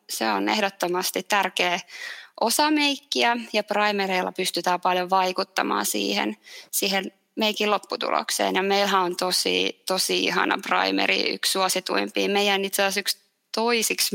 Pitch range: 175-210 Hz